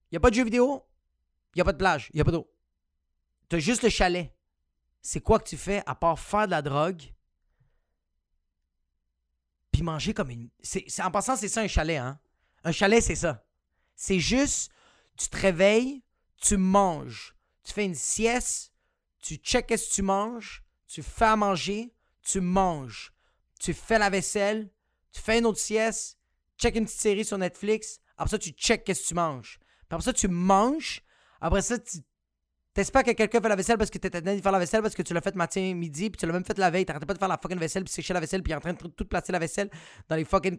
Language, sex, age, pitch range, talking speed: French, male, 30-49, 155-215 Hz, 230 wpm